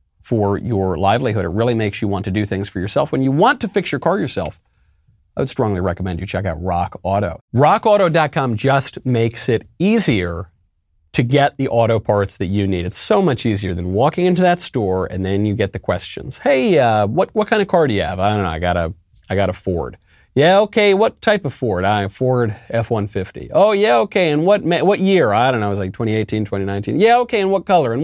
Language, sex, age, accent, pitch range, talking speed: English, male, 40-59, American, 100-145 Hz, 230 wpm